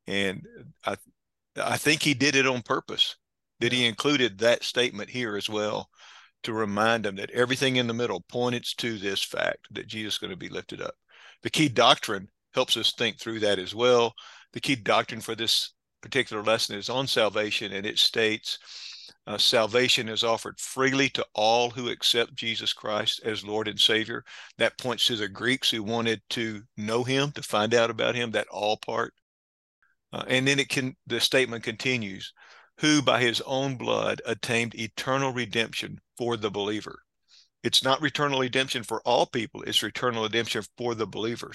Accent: American